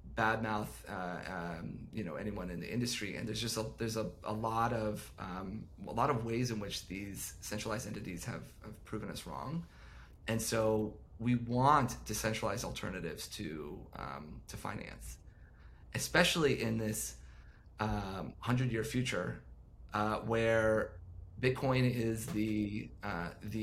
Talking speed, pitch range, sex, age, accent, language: 145 wpm, 90-115 Hz, male, 30-49, American, English